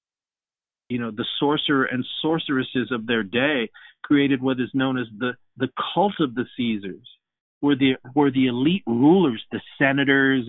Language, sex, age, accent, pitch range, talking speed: English, male, 50-69, American, 125-160 Hz, 160 wpm